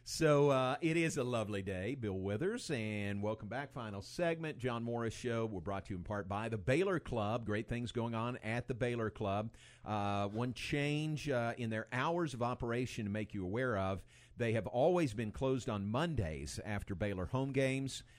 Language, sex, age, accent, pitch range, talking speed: English, male, 50-69, American, 100-125 Hz, 200 wpm